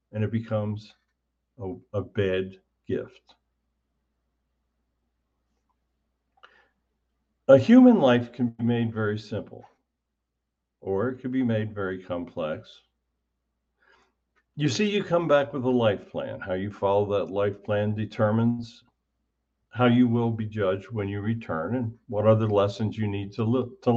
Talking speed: 140 wpm